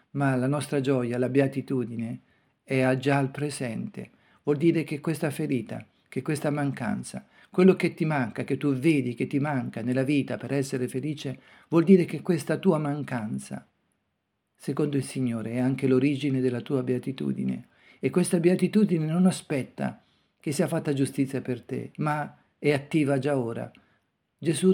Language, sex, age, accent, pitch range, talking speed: Italian, male, 50-69, native, 130-150 Hz, 160 wpm